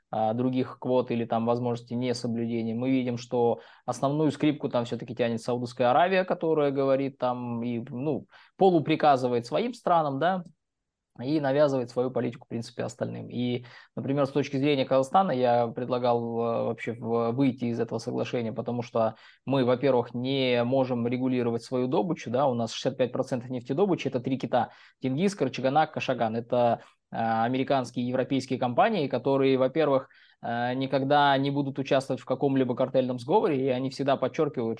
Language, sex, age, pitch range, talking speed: Russian, male, 20-39, 120-140 Hz, 145 wpm